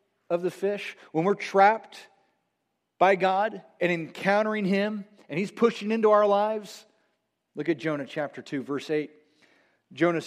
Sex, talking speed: male, 145 wpm